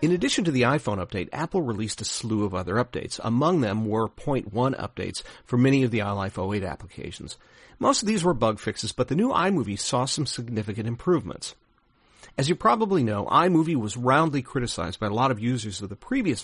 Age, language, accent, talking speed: 40-59, English, American, 200 wpm